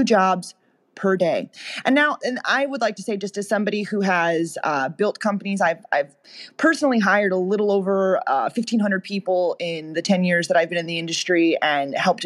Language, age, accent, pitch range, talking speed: English, 20-39, American, 175-220 Hz, 200 wpm